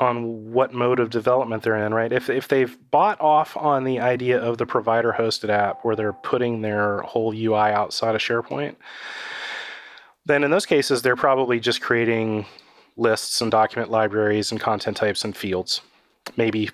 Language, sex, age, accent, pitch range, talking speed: English, male, 30-49, American, 105-125 Hz, 170 wpm